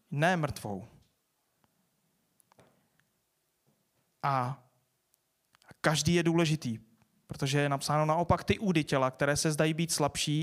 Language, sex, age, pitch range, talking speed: Czech, male, 30-49, 135-165 Hz, 105 wpm